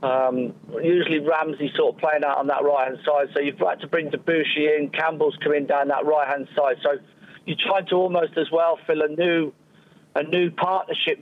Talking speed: 200 wpm